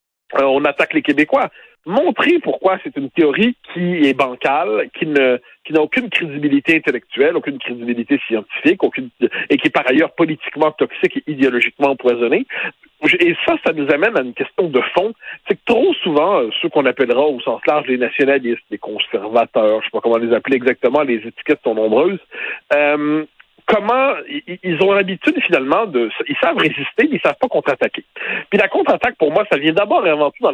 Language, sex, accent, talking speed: French, male, French, 190 wpm